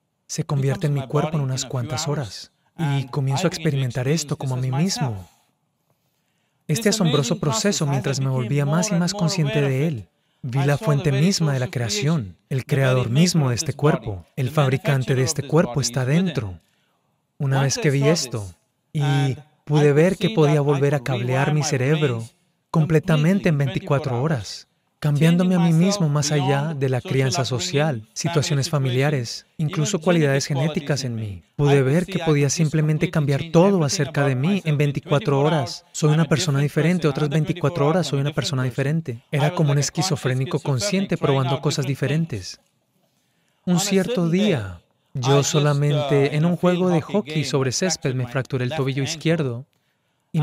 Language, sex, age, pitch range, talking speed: Spanish, male, 30-49, 135-160 Hz, 160 wpm